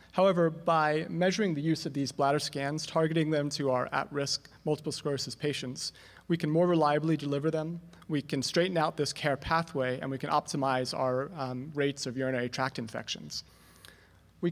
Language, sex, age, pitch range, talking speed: English, male, 30-49, 130-160 Hz, 175 wpm